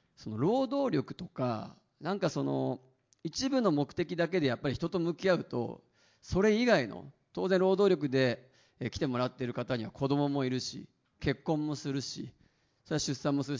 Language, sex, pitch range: Japanese, male, 125-185 Hz